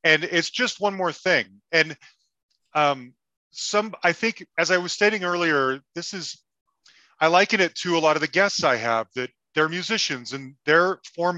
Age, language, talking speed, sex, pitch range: 30-49, English, 185 wpm, male, 130-175 Hz